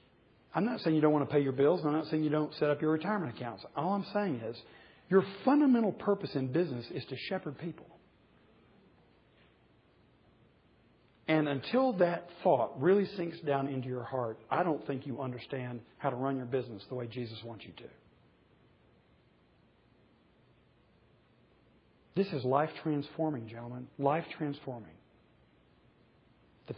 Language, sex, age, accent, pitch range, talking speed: English, male, 40-59, American, 125-155 Hz, 150 wpm